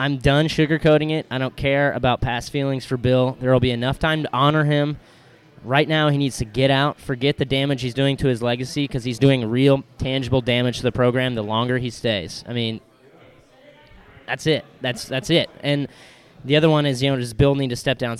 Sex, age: male, 20-39